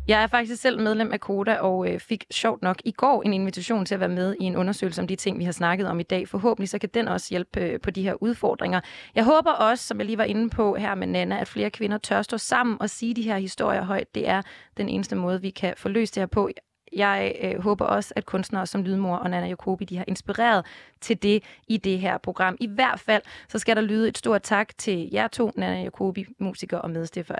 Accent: native